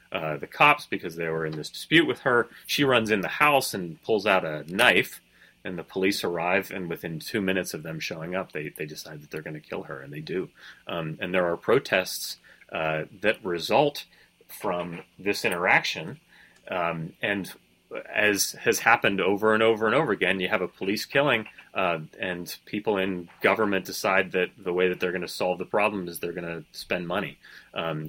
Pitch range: 85-105 Hz